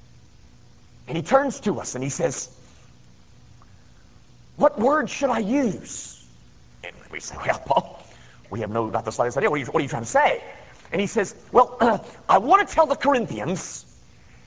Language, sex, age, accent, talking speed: English, male, 50-69, American, 185 wpm